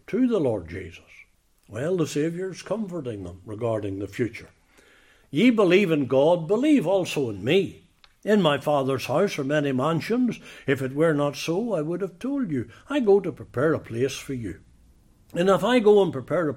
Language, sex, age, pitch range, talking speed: English, male, 60-79, 115-155 Hz, 190 wpm